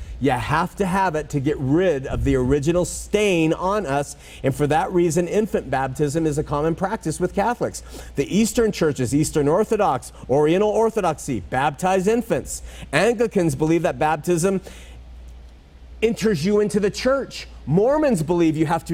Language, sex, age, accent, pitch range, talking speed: English, male, 40-59, American, 140-200 Hz, 155 wpm